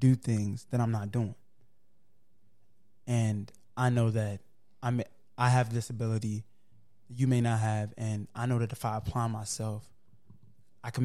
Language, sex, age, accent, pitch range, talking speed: English, male, 20-39, American, 110-130 Hz, 160 wpm